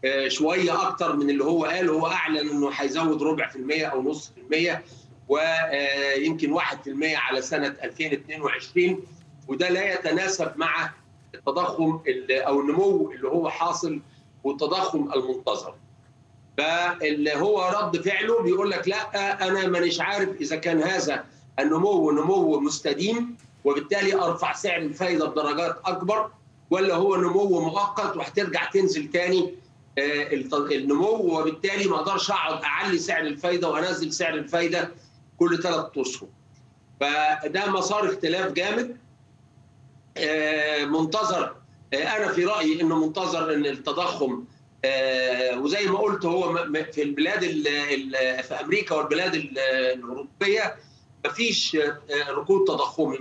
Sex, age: male, 40-59